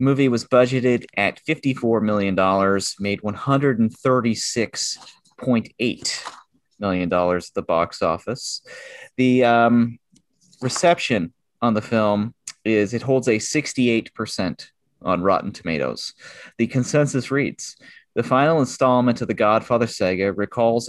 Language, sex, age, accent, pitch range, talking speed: English, male, 30-49, American, 100-130 Hz, 110 wpm